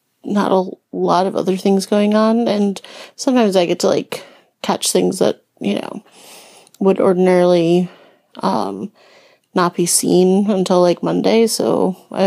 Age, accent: 30-49, American